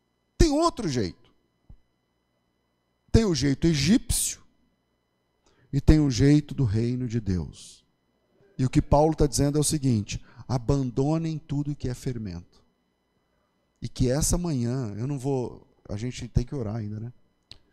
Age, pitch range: 40-59, 100-135 Hz